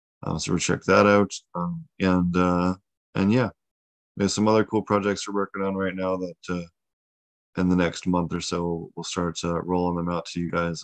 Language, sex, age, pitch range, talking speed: English, male, 20-39, 85-95 Hz, 215 wpm